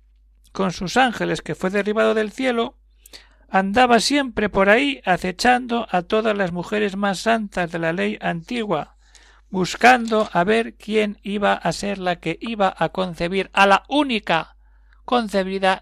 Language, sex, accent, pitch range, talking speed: Spanish, male, Spanish, 165-220 Hz, 150 wpm